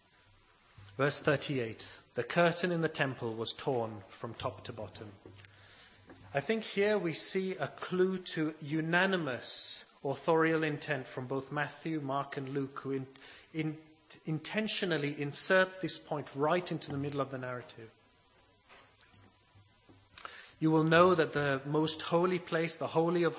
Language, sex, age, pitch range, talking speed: English, male, 30-49, 130-160 Hz, 135 wpm